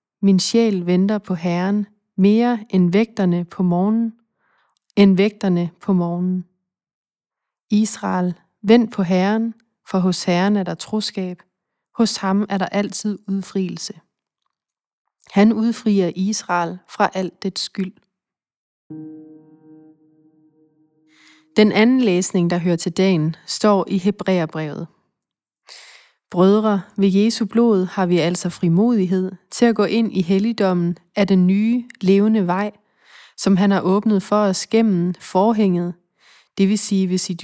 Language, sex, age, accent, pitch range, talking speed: Danish, female, 30-49, native, 180-210 Hz, 125 wpm